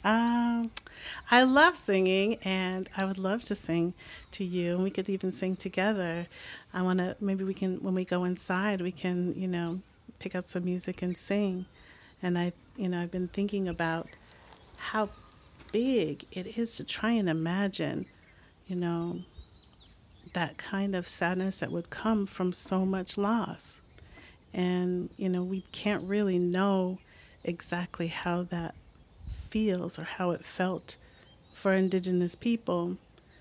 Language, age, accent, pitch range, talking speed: English, 40-59, American, 175-195 Hz, 155 wpm